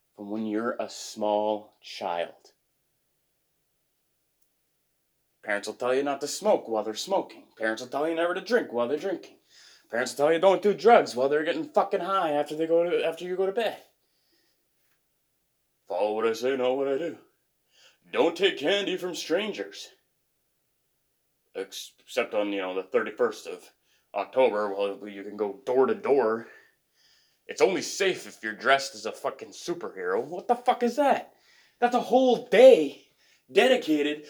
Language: English